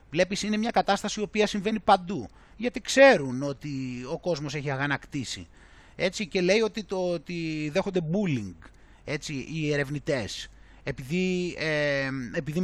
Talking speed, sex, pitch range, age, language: 140 wpm, male, 145-190 Hz, 30-49, Greek